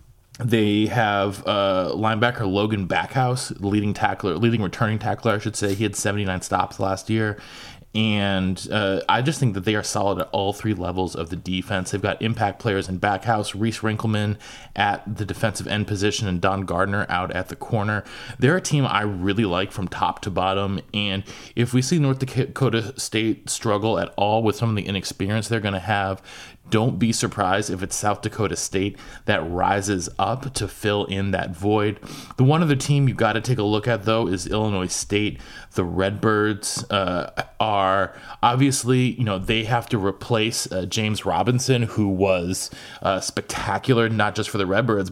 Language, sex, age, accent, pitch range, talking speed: English, male, 20-39, American, 100-115 Hz, 185 wpm